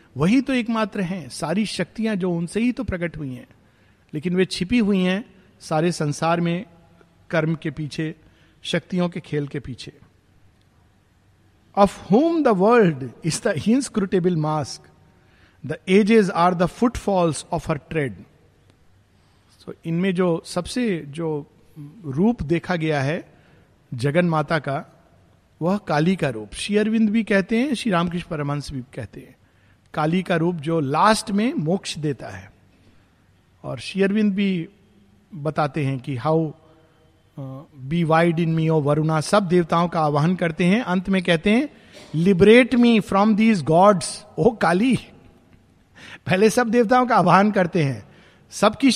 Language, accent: Hindi, native